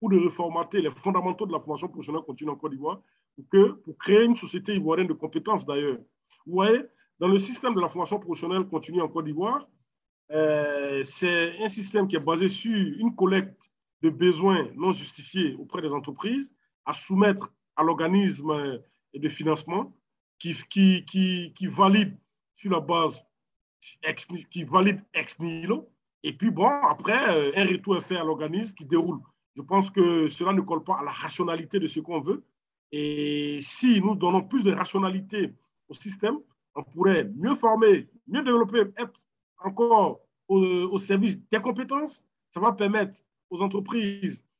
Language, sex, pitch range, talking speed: French, male, 165-210 Hz, 170 wpm